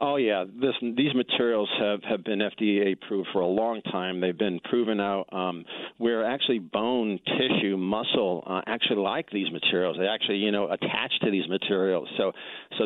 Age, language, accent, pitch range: 50-69, English, American, 95-115 Hz